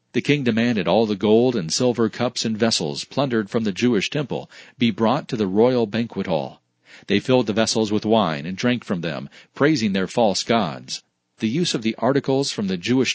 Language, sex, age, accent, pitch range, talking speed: English, male, 40-59, American, 110-135 Hz, 205 wpm